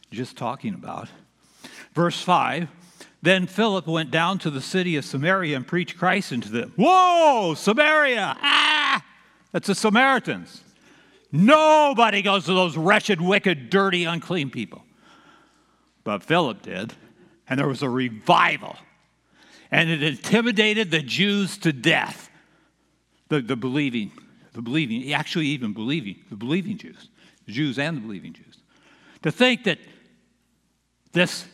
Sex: male